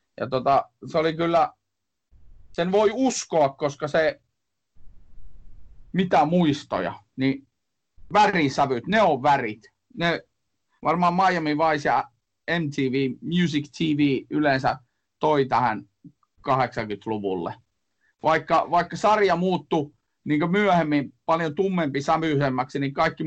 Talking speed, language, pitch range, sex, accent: 105 wpm, Finnish, 120-160 Hz, male, native